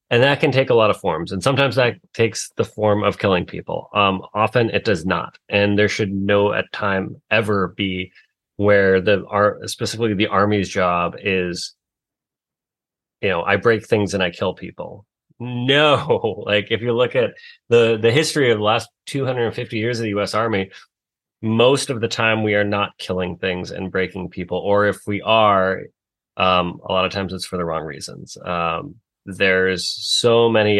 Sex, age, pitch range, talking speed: male, 30-49, 95-115 Hz, 185 wpm